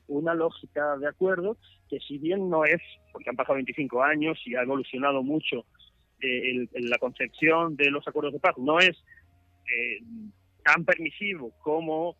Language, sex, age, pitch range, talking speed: Spanish, male, 40-59, 135-175 Hz, 160 wpm